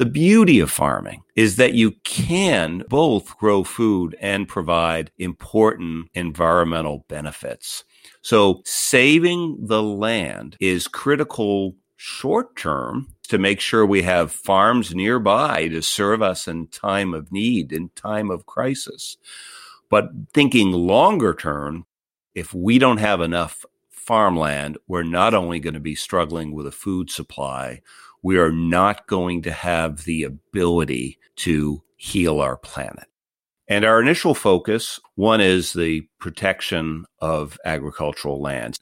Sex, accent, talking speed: male, American, 135 wpm